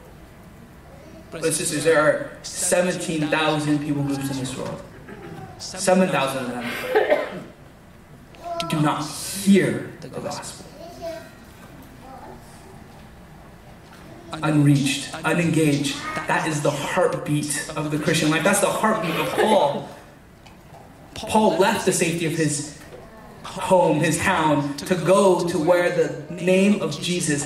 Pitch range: 150-180 Hz